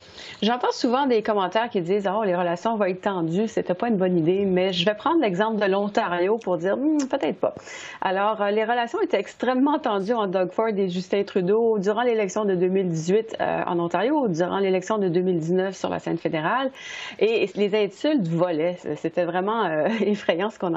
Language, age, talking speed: French, 40-59, 195 wpm